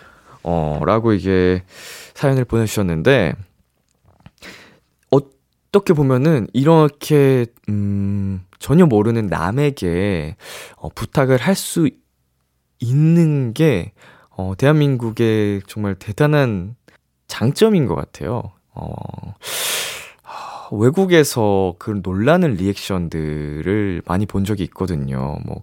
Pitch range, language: 90-135 Hz, Korean